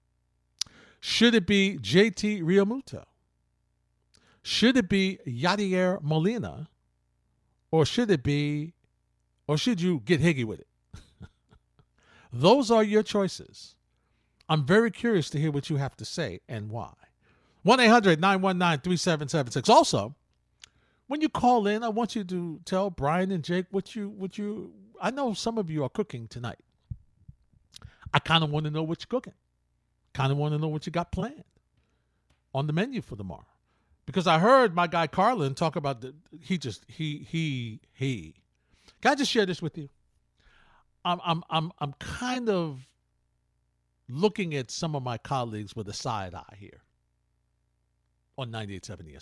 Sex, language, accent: male, English, American